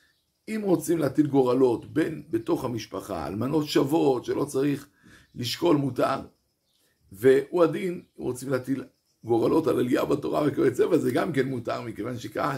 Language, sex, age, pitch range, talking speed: Hebrew, male, 60-79, 115-150 Hz, 145 wpm